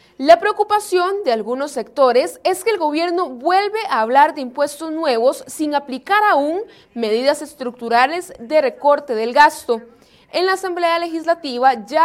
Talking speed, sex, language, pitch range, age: 145 wpm, female, Spanish, 240-330 Hz, 30-49